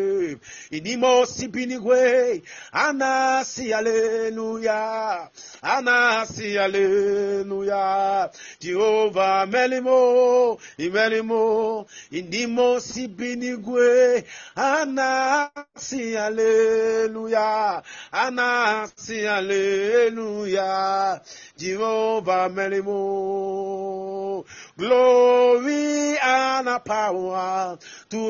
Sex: male